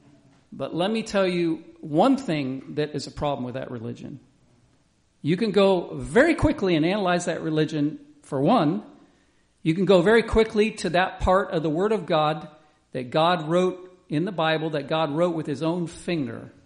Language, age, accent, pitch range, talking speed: English, 50-69, American, 135-190 Hz, 185 wpm